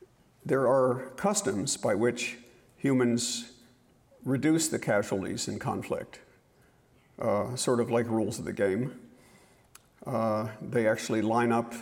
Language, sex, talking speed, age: English, male, 120 wpm, 50-69